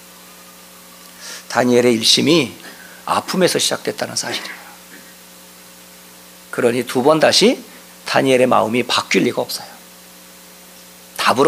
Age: 40-59